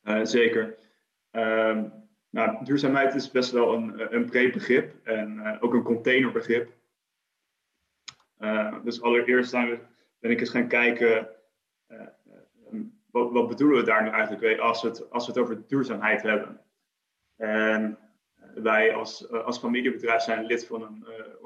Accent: Dutch